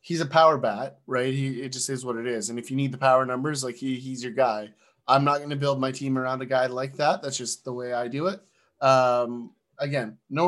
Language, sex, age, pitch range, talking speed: English, male, 30-49, 120-135 Hz, 265 wpm